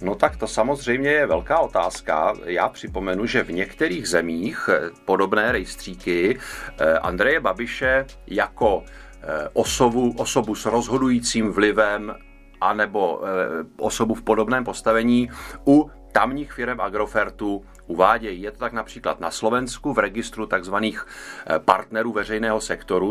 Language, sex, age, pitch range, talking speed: Czech, male, 30-49, 95-120 Hz, 115 wpm